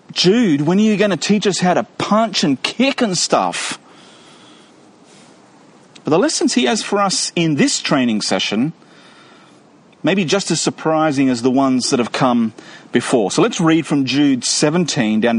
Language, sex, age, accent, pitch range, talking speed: English, male, 40-59, Australian, 135-205 Hz, 175 wpm